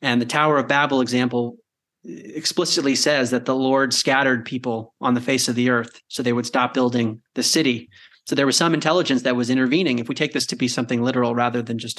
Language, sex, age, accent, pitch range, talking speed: English, male, 30-49, American, 125-140 Hz, 225 wpm